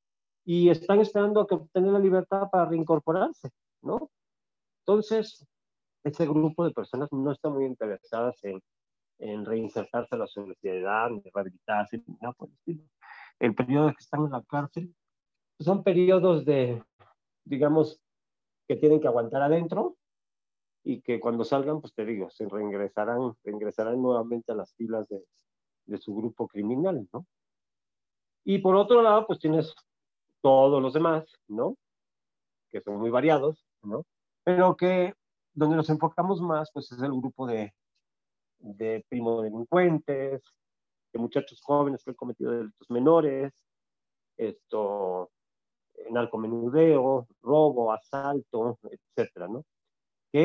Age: 40-59